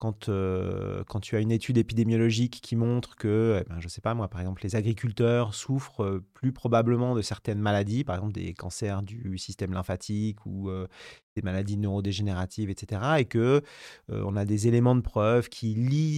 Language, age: French, 30-49